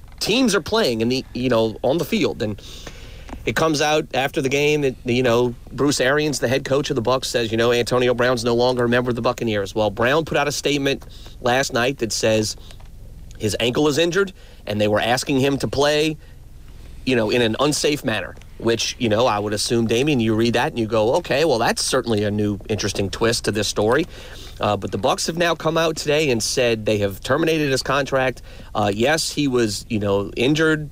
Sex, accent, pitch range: male, American, 110-140 Hz